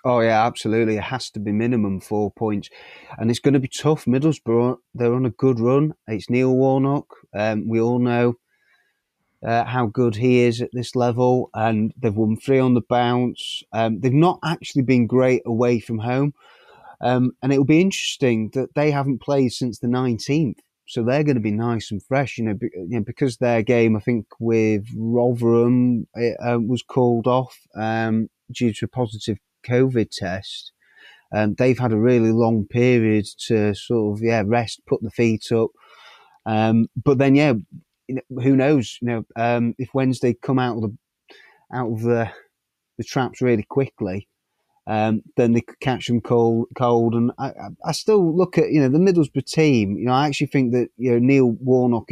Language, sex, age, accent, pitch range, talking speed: English, male, 30-49, British, 110-130 Hz, 185 wpm